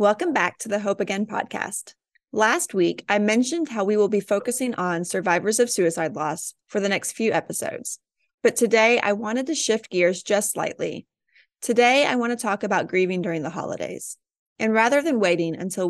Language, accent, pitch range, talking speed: English, American, 180-230 Hz, 190 wpm